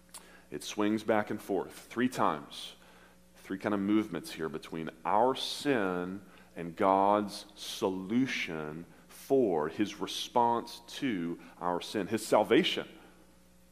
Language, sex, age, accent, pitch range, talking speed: English, male, 40-59, American, 80-105 Hz, 115 wpm